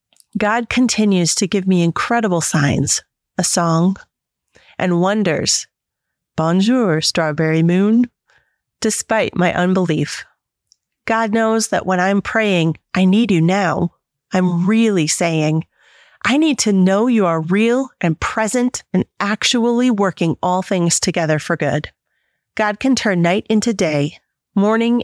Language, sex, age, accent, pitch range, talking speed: English, female, 30-49, American, 170-220 Hz, 130 wpm